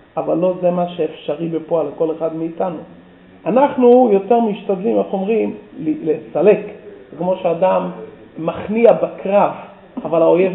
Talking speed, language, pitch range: 120 wpm, Hebrew, 170-230 Hz